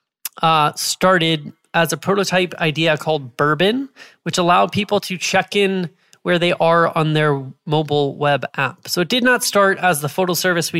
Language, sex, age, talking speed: English, male, 20-39, 180 wpm